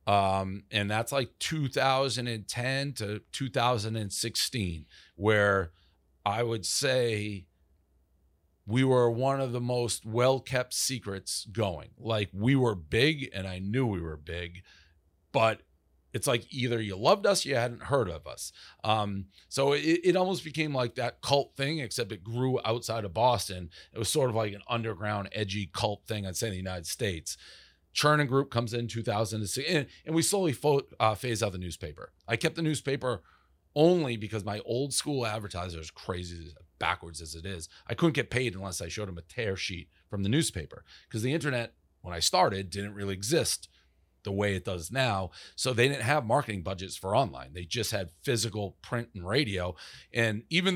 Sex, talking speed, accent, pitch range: male, 175 wpm, American, 95-125 Hz